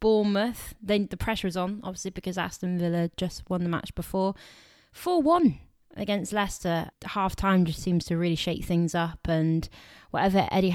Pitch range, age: 170-205 Hz, 20-39